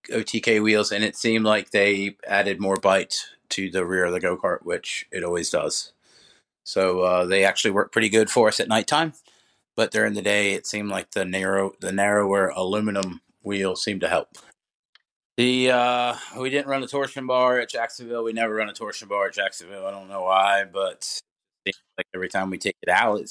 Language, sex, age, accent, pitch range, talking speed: English, male, 30-49, American, 95-115 Hz, 205 wpm